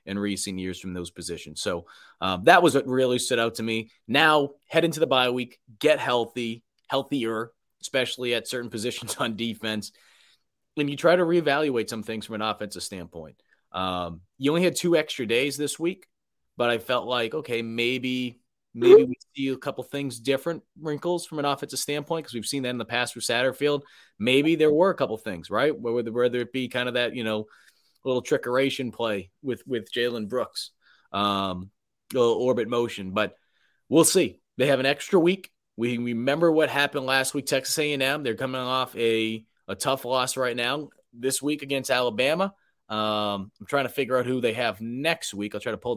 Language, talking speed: English, 195 wpm